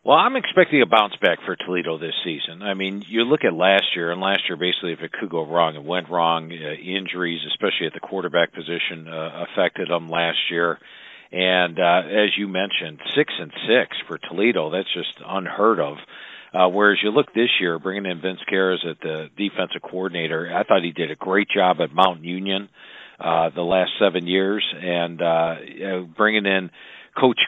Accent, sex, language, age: American, male, English, 50-69